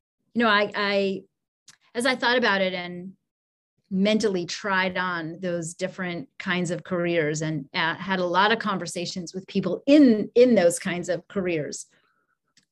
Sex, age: female, 30-49